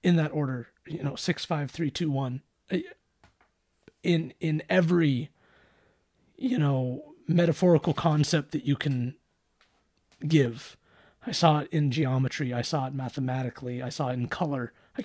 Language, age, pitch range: English, 30-49, 130-160 Hz